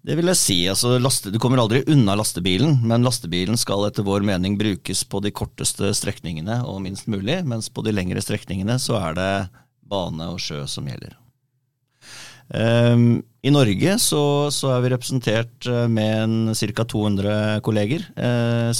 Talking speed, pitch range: 170 wpm, 100-125 Hz